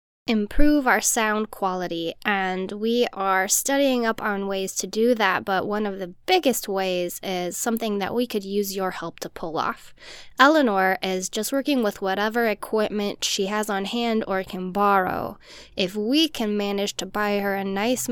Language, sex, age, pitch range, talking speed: English, female, 10-29, 195-245 Hz, 180 wpm